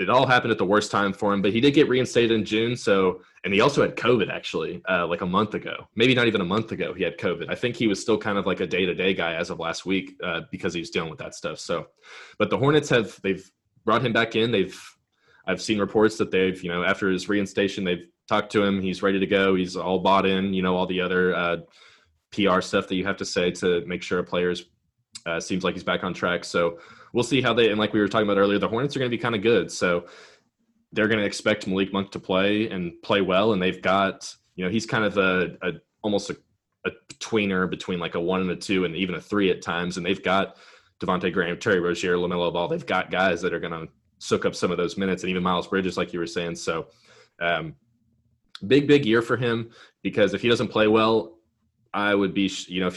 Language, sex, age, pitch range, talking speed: English, male, 20-39, 90-110 Hz, 260 wpm